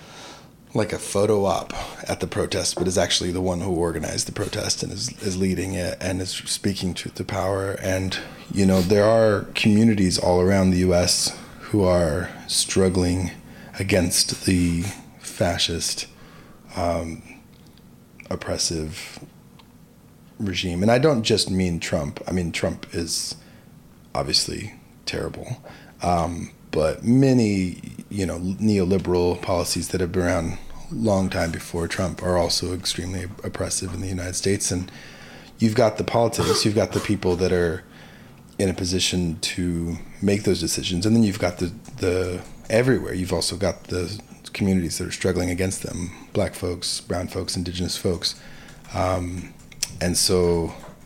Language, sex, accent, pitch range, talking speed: English, male, American, 90-100 Hz, 150 wpm